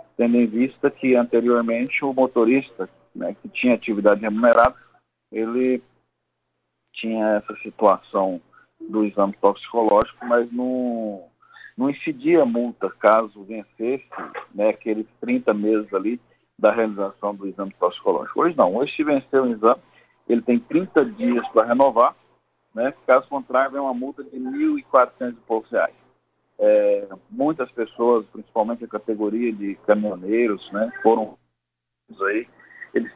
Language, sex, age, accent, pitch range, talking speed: Portuguese, male, 40-59, Brazilian, 110-125 Hz, 125 wpm